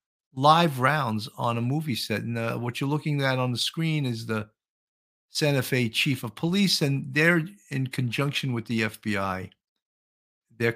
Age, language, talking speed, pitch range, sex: 50-69, English, 165 wpm, 110-155 Hz, male